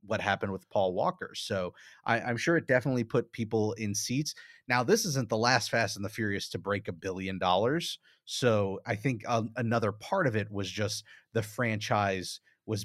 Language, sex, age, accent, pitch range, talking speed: English, male, 30-49, American, 100-125 Hz, 195 wpm